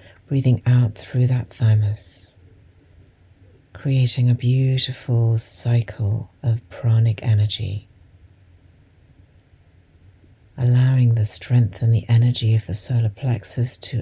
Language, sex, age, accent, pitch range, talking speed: English, female, 60-79, British, 95-120 Hz, 100 wpm